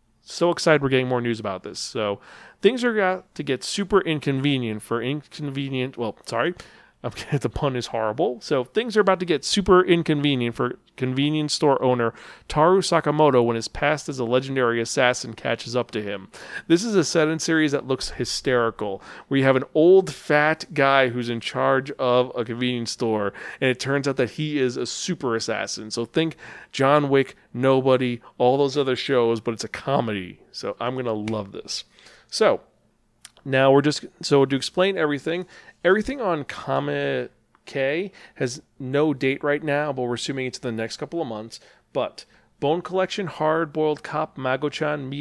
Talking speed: 185 wpm